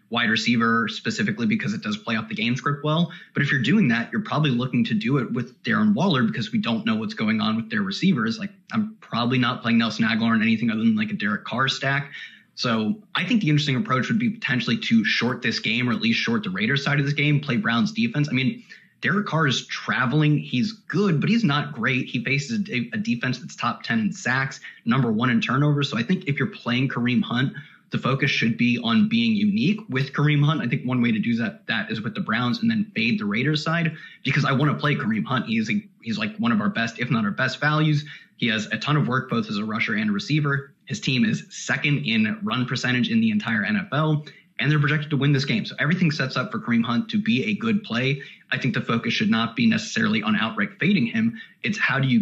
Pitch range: 130-220 Hz